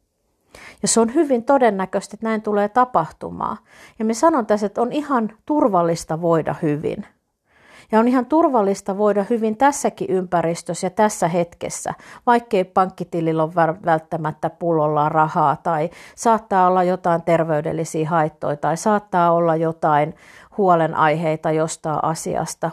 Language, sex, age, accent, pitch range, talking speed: Finnish, female, 50-69, native, 170-220 Hz, 130 wpm